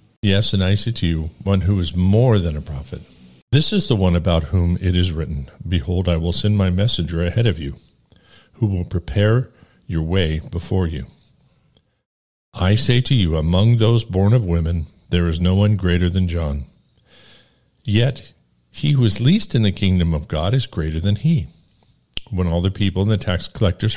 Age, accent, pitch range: 50-69, American, 85-115 Hz